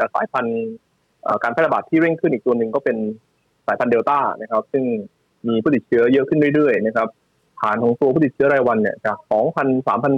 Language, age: Thai, 20-39